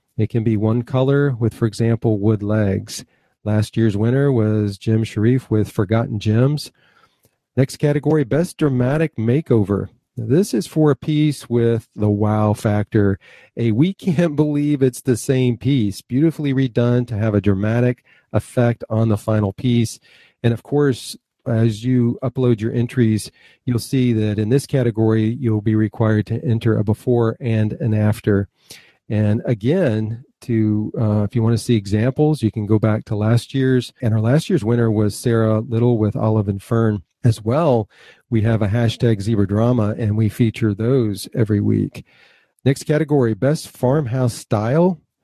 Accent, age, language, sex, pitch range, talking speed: American, 40-59, English, male, 110-130 Hz, 165 wpm